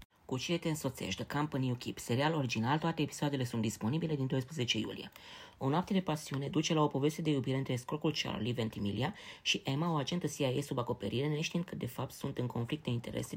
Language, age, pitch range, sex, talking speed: Romanian, 20-39, 130-160 Hz, female, 200 wpm